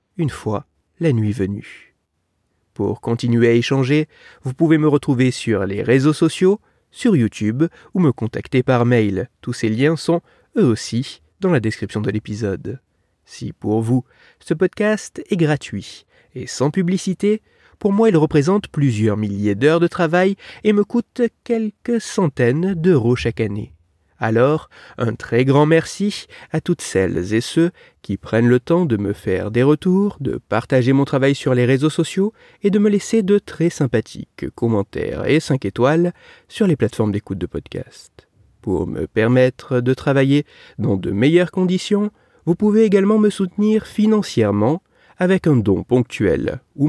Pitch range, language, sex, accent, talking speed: 110-185 Hz, French, male, French, 160 wpm